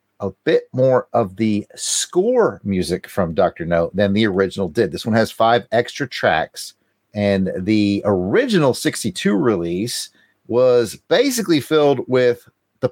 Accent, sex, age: American, male, 40-59